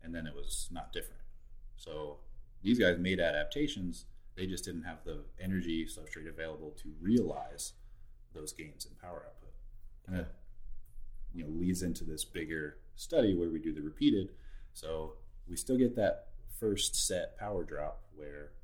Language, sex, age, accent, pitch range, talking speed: English, male, 30-49, American, 75-105 Hz, 155 wpm